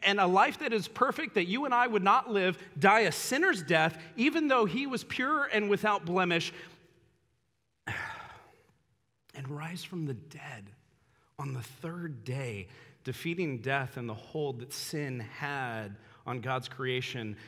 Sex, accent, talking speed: male, American, 155 wpm